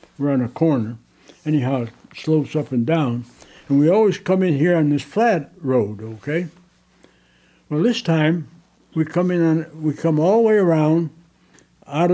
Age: 60-79